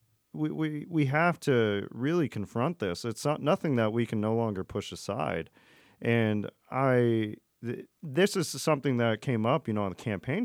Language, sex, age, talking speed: English, male, 40-59, 185 wpm